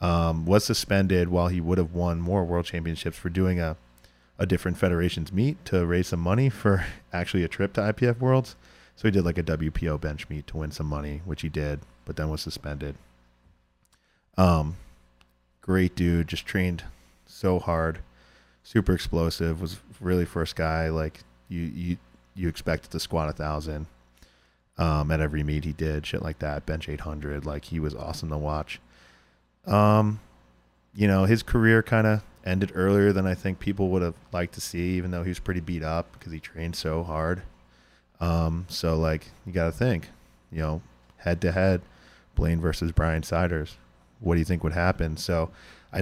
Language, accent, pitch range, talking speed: English, American, 75-90 Hz, 185 wpm